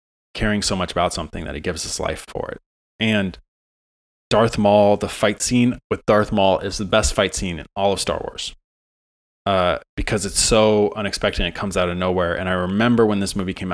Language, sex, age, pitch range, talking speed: English, male, 20-39, 90-105 Hz, 215 wpm